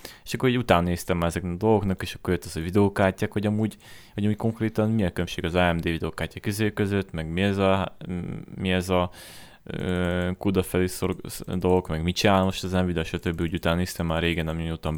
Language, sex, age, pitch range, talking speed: Hungarian, male, 20-39, 85-105 Hz, 195 wpm